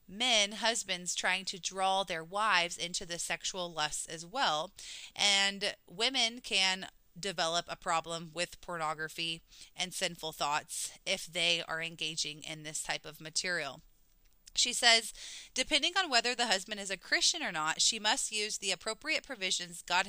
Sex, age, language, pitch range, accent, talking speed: female, 20-39, English, 170-225 Hz, American, 155 wpm